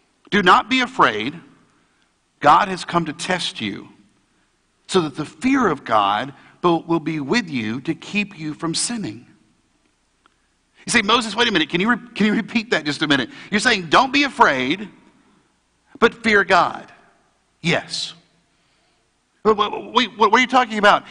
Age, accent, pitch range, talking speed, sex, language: 50-69, American, 185-240 Hz, 165 wpm, male, English